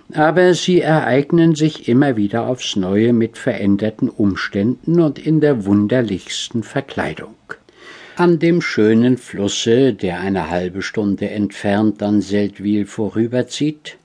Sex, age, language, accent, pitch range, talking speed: male, 60-79, German, German, 100-140 Hz, 120 wpm